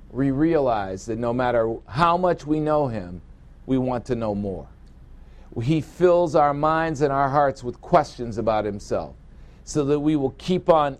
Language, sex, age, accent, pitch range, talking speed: English, male, 50-69, American, 105-155 Hz, 175 wpm